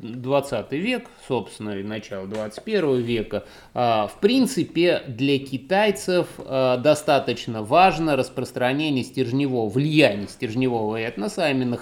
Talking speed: 100 wpm